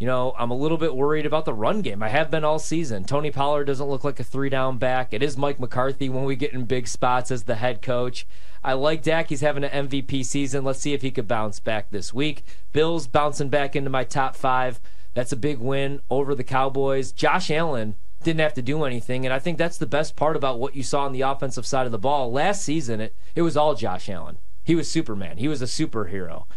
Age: 30-49